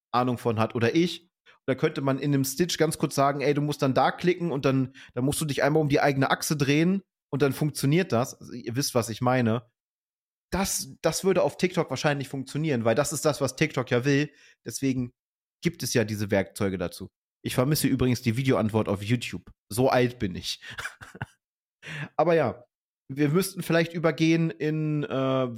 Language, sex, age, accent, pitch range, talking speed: German, male, 30-49, German, 125-150 Hz, 190 wpm